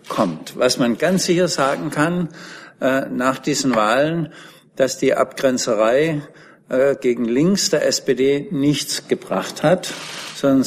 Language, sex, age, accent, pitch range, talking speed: German, male, 60-79, German, 125-155 Hz, 130 wpm